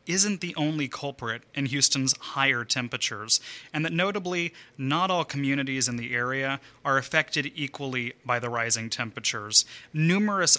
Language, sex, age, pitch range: English, male, 30-49, 125-155 Hz